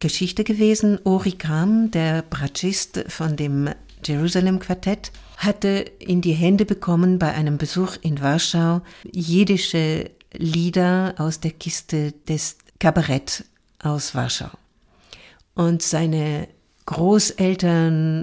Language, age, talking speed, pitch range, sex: German, 60-79, 100 wpm, 155-180 Hz, female